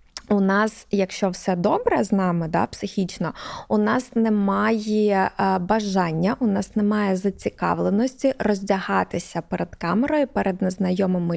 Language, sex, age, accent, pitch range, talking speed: Ukrainian, female, 20-39, native, 180-215 Hz, 115 wpm